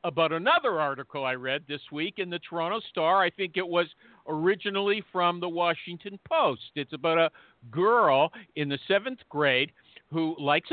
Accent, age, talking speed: American, 50-69, 170 wpm